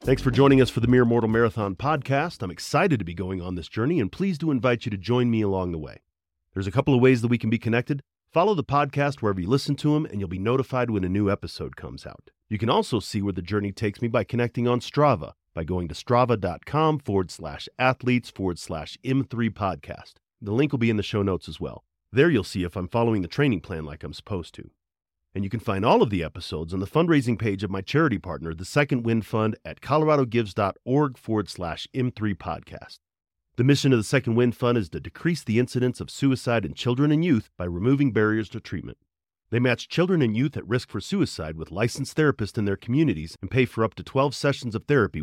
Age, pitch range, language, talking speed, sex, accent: 40-59, 95-130 Hz, English, 235 wpm, male, American